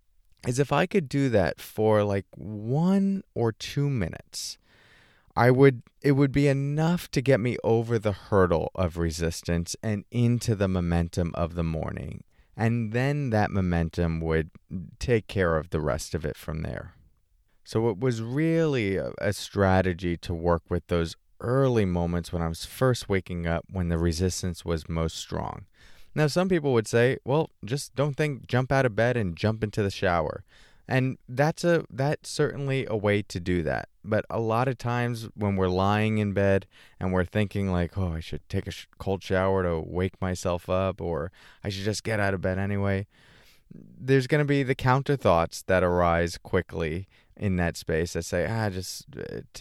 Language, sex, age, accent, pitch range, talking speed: English, male, 30-49, American, 90-125 Hz, 180 wpm